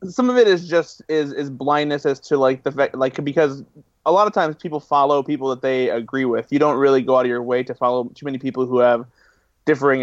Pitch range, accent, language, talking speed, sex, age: 125-140 Hz, American, English, 255 wpm, male, 20-39